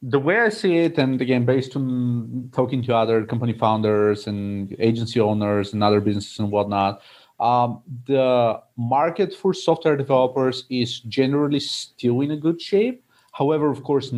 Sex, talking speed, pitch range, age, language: male, 160 wpm, 110-135 Hz, 30-49, English